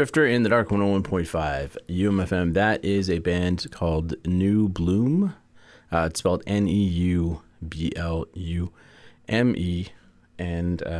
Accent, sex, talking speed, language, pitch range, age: American, male, 100 wpm, English, 80-100 Hz, 30-49